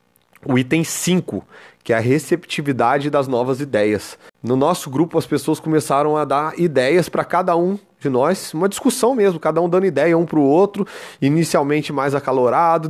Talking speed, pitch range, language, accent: 175 wpm, 125-155 Hz, Portuguese, Brazilian